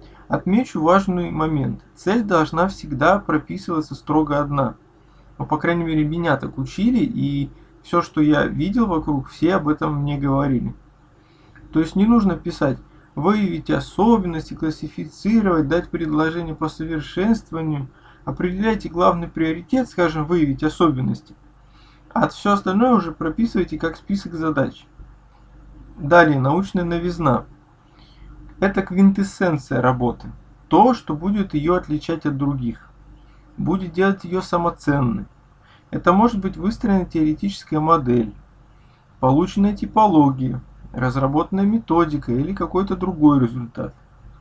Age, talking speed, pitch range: 20-39, 115 wpm, 145-185 Hz